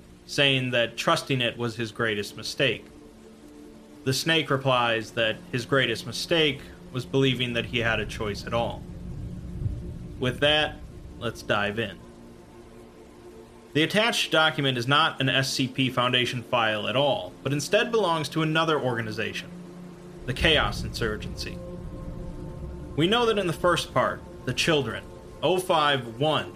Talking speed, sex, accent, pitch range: 135 wpm, male, American, 115-155 Hz